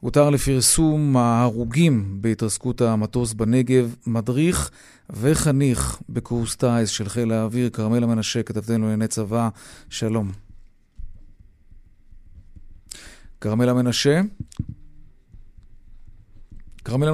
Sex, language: male, Hebrew